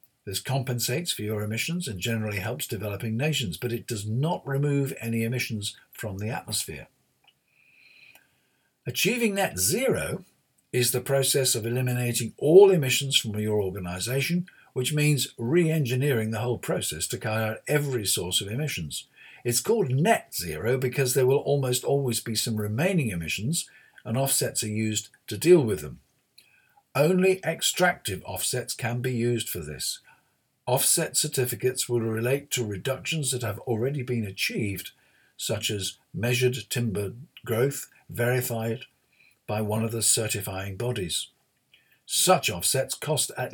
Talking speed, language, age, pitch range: 140 wpm, English, 60-79, 115-145 Hz